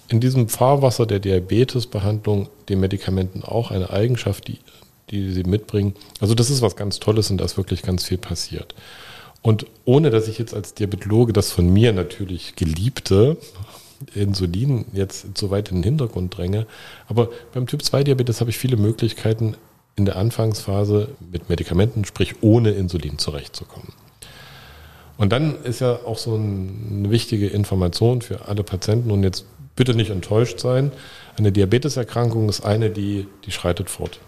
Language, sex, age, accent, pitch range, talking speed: German, male, 40-59, German, 95-115 Hz, 160 wpm